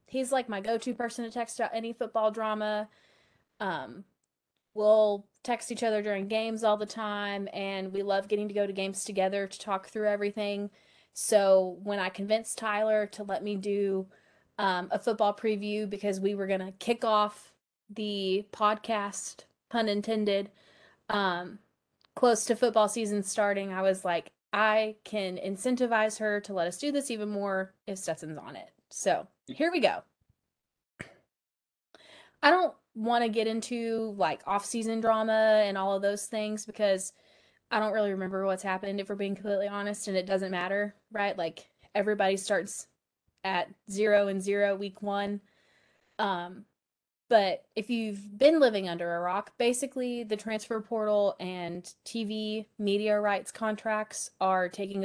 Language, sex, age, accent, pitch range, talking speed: English, female, 20-39, American, 195-220 Hz, 160 wpm